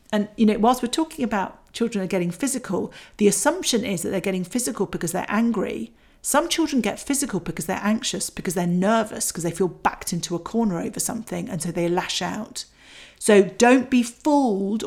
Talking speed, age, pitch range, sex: 200 wpm, 40-59, 180-225 Hz, female